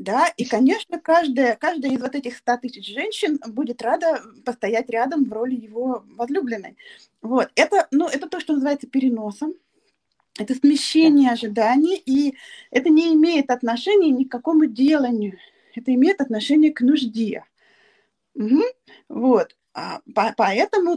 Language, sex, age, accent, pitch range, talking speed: Russian, female, 20-39, native, 240-310 Hz, 125 wpm